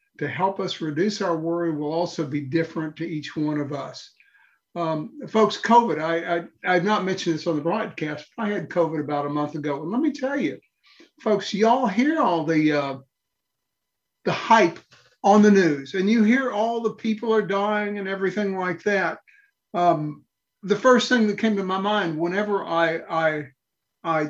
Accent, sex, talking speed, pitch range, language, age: American, male, 190 wpm, 165-220 Hz, English, 50-69